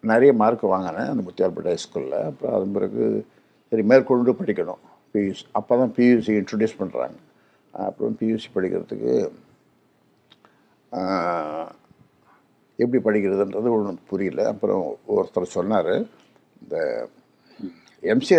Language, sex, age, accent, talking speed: Tamil, male, 60-79, native, 100 wpm